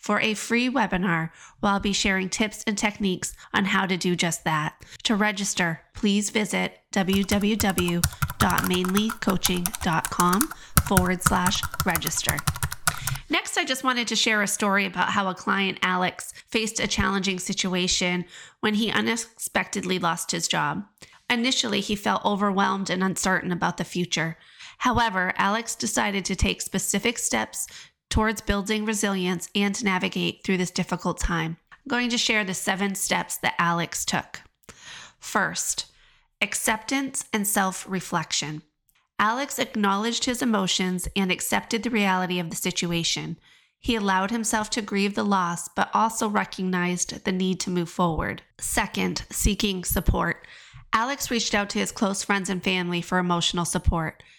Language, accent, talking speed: English, American, 140 wpm